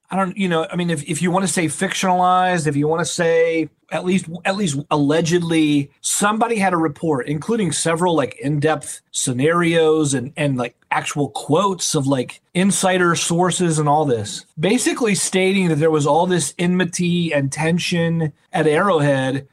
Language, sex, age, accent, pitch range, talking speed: English, male, 30-49, American, 145-175 Hz, 170 wpm